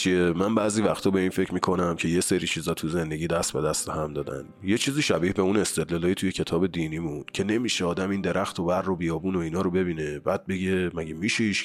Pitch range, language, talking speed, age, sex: 85-105 Hz, Persian, 235 wpm, 30-49, male